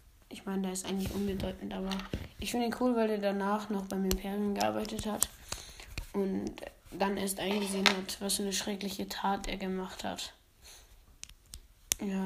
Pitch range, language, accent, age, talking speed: 195-225 Hz, German, German, 20-39, 160 wpm